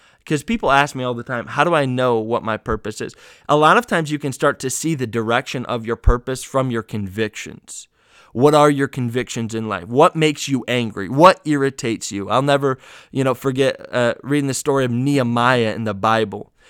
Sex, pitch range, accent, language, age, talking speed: male, 125-155 Hz, American, English, 20-39, 210 wpm